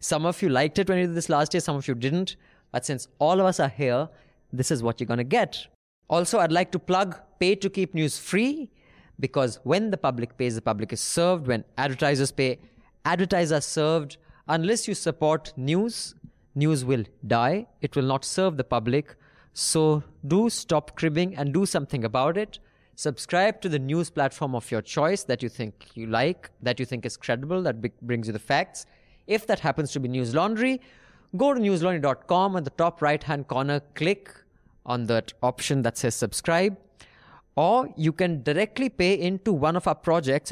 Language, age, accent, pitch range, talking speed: English, 30-49, Indian, 125-175 Hz, 195 wpm